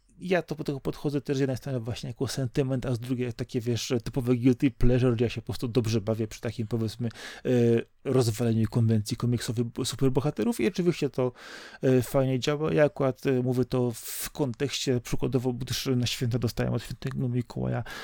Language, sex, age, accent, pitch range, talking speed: Polish, male, 30-49, native, 120-145 Hz, 180 wpm